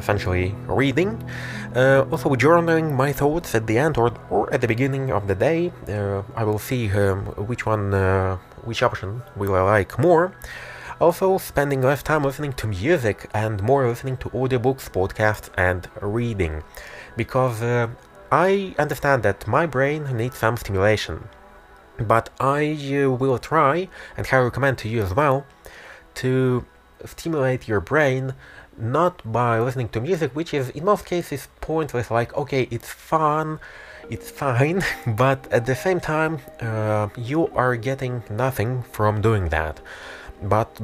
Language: English